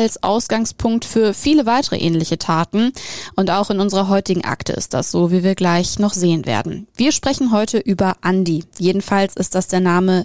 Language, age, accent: German, 20-39, German